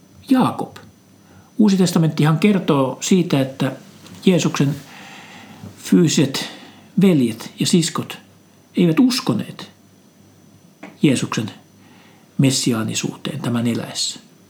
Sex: male